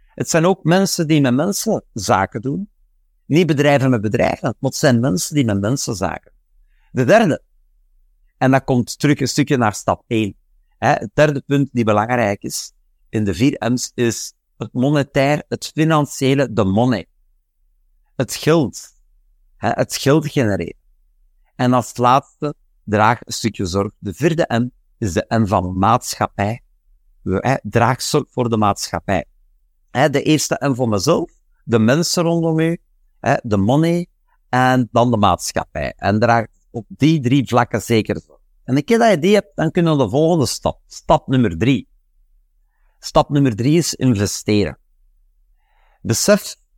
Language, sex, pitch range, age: Dutch, male, 100-150 Hz, 50-69